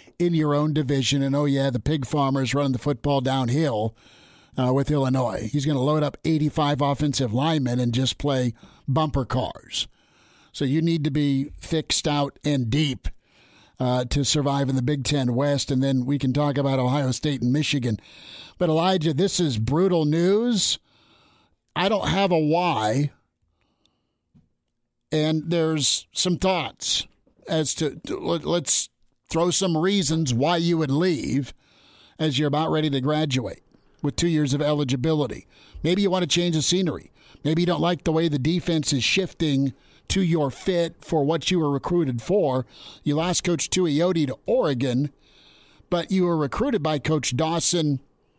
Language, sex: English, male